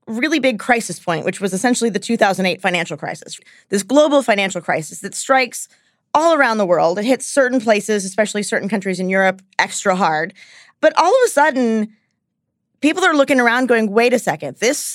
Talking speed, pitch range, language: 185 wpm, 195-275 Hz, English